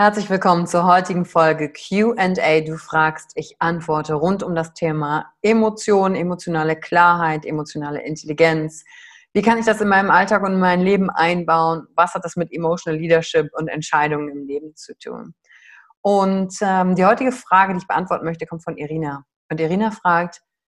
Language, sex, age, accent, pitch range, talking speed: German, female, 30-49, German, 165-210 Hz, 170 wpm